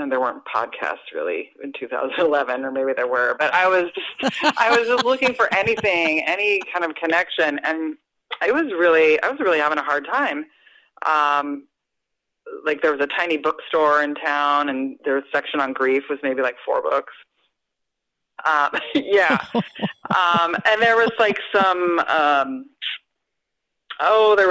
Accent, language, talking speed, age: American, English, 160 wpm, 30-49